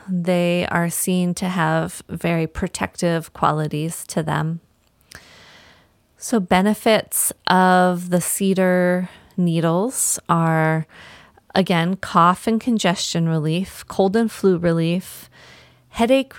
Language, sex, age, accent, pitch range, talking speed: English, female, 30-49, American, 165-190 Hz, 100 wpm